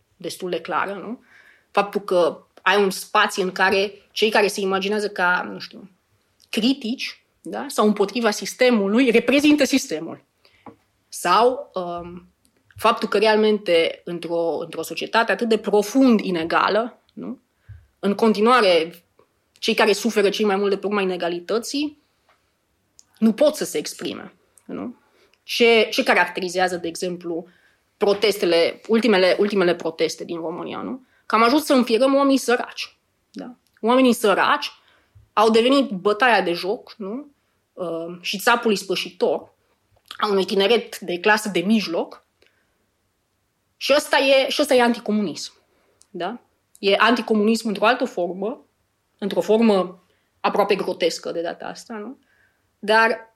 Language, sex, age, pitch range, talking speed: Romanian, female, 20-39, 185-240 Hz, 130 wpm